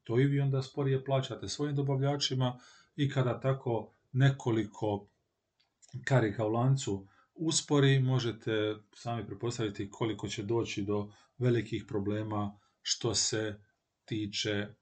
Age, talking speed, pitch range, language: 40-59, 115 wpm, 105-135 Hz, Croatian